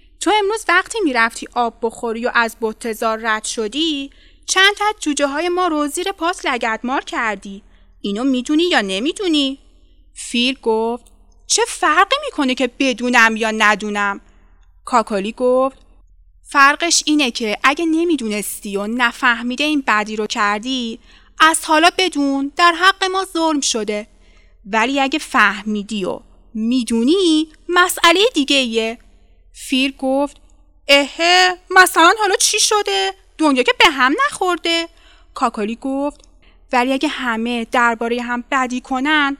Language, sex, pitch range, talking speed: Persian, female, 235-335 Hz, 130 wpm